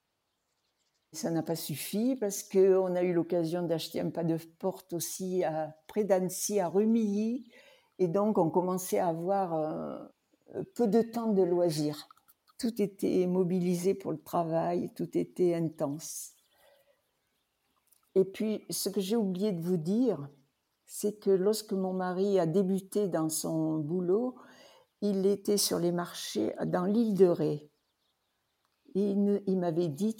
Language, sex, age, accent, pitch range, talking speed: French, female, 60-79, French, 175-215 Hz, 145 wpm